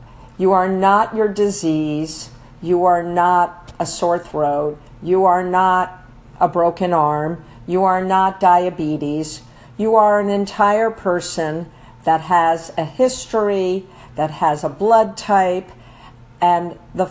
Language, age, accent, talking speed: English, 50-69, American, 130 wpm